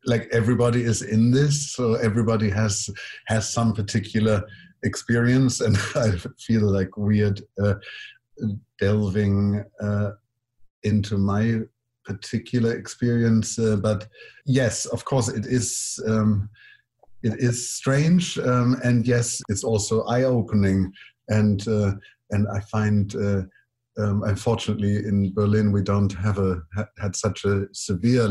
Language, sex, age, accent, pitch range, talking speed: English, male, 50-69, German, 105-120 Hz, 125 wpm